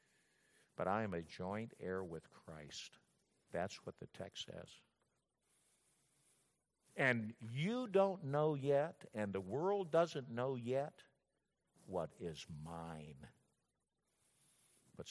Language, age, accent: English, 60-79, American